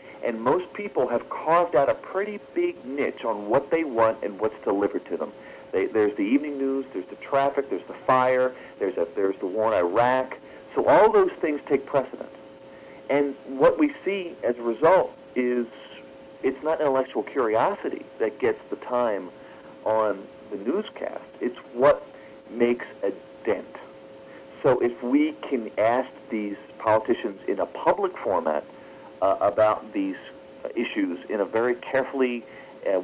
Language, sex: English, male